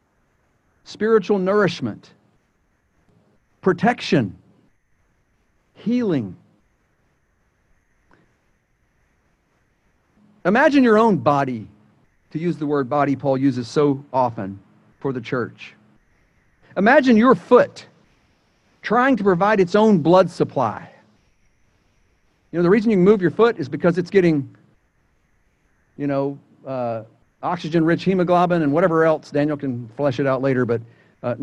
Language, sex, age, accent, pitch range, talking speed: English, male, 50-69, American, 125-205 Hz, 115 wpm